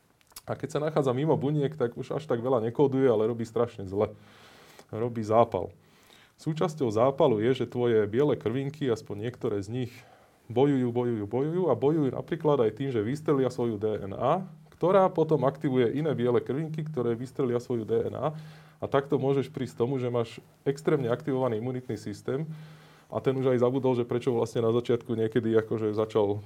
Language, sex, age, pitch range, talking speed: Slovak, male, 20-39, 110-135 Hz, 170 wpm